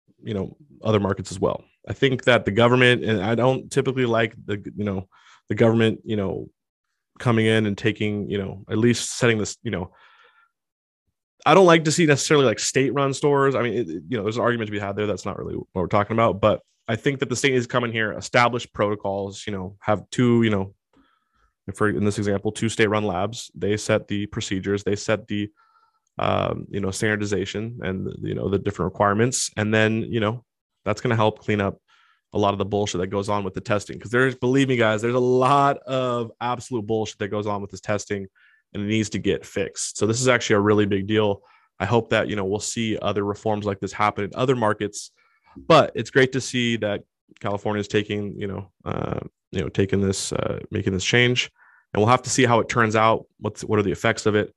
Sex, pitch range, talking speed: male, 100-120 Hz, 230 wpm